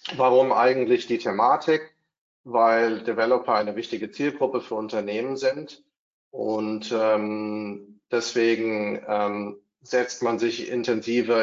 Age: 40-59